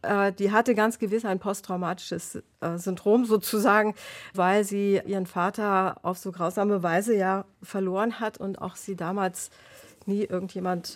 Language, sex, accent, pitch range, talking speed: German, female, German, 185-205 Hz, 135 wpm